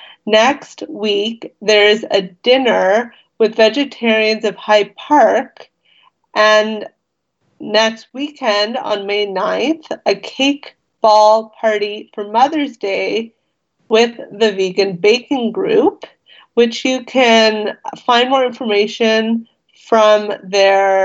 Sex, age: female, 30-49